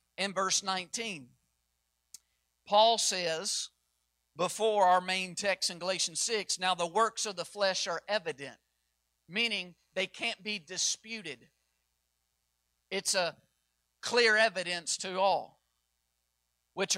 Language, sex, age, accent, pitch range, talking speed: English, male, 50-69, American, 140-195 Hz, 115 wpm